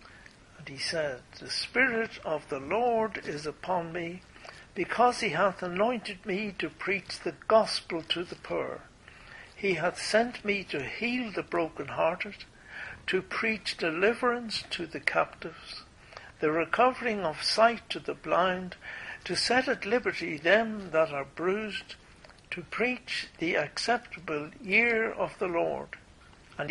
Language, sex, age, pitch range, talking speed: English, male, 60-79, 155-225 Hz, 135 wpm